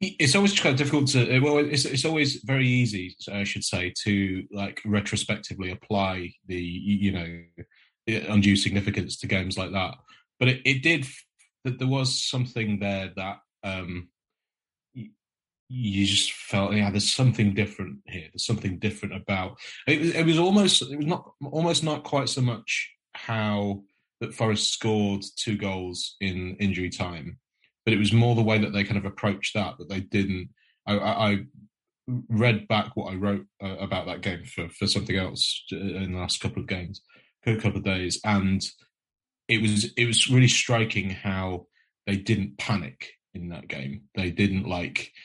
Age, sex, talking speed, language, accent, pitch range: 30-49, male, 170 wpm, English, British, 95-115 Hz